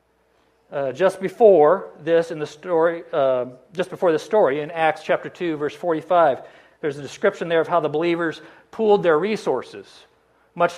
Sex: male